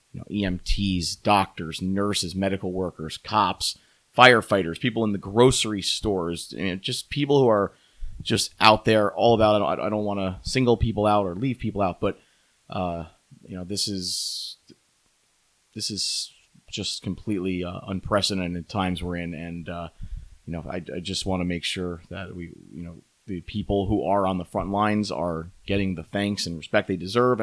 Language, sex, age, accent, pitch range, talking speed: English, male, 30-49, American, 85-100 Hz, 180 wpm